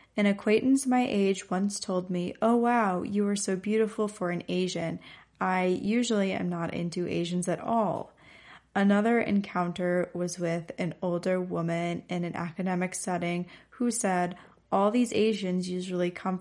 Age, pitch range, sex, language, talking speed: 20-39, 175-205 Hz, female, English, 155 wpm